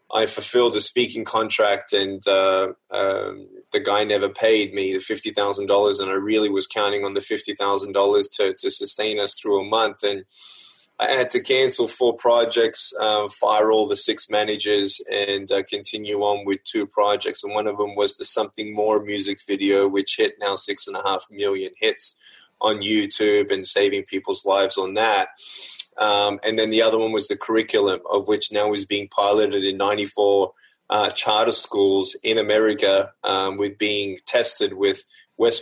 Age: 20-39